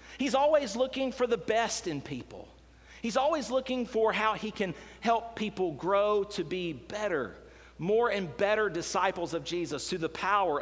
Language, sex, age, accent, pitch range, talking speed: English, male, 40-59, American, 130-200 Hz, 170 wpm